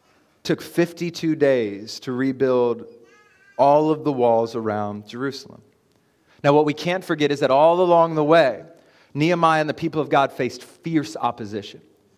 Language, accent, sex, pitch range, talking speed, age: English, American, male, 125-170 Hz, 155 wpm, 30-49